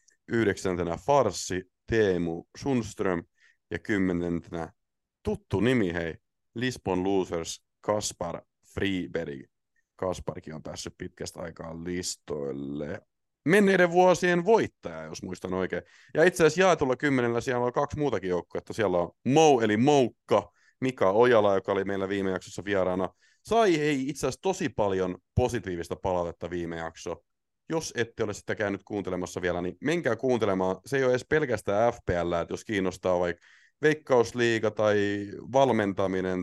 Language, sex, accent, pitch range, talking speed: Finnish, male, native, 90-125 Hz, 135 wpm